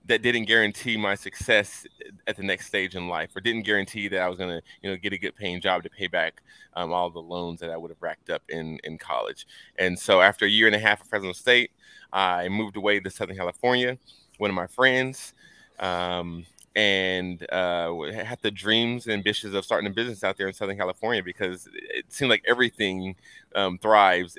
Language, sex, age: English, male, 20-39